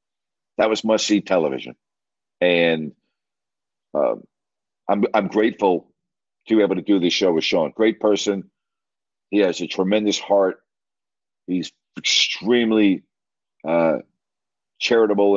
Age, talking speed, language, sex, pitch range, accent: 50-69, 115 wpm, English, male, 90-115 Hz, American